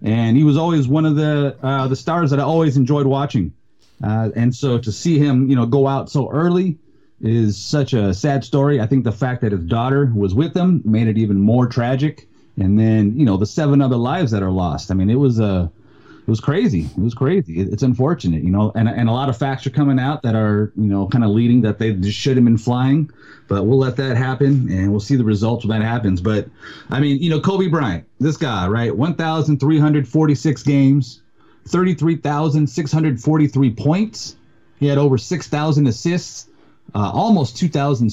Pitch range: 110-150 Hz